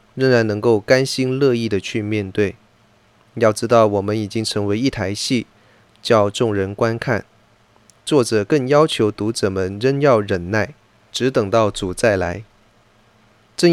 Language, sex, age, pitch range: Chinese, male, 20-39, 100-120 Hz